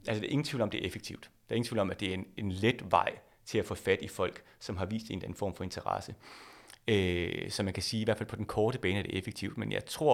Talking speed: 330 wpm